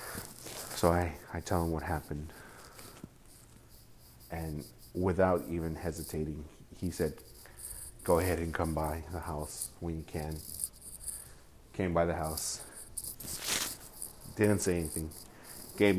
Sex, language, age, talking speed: male, English, 30-49, 115 wpm